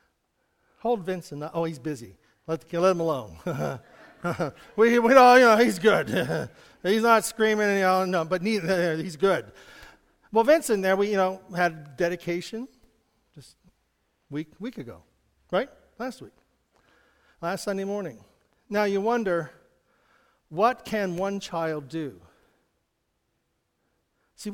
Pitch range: 155-225 Hz